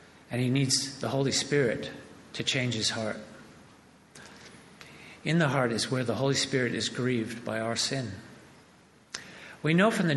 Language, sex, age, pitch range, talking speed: English, male, 50-69, 115-145 Hz, 160 wpm